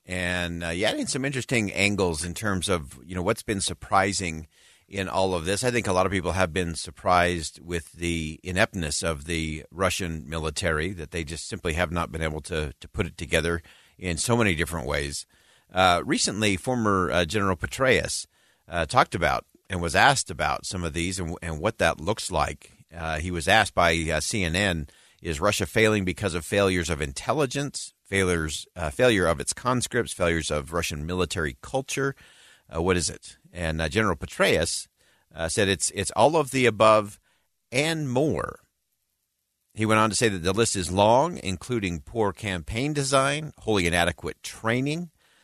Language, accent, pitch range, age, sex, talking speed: English, American, 85-110 Hz, 40-59, male, 180 wpm